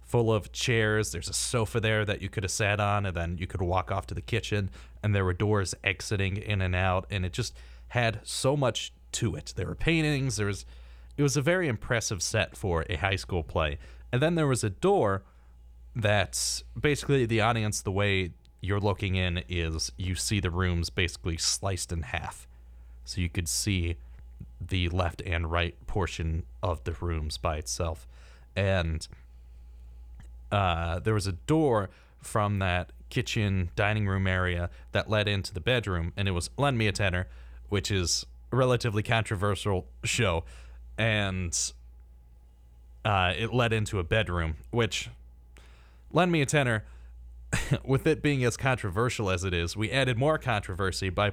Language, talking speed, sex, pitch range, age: English, 170 wpm, male, 75-105 Hz, 30-49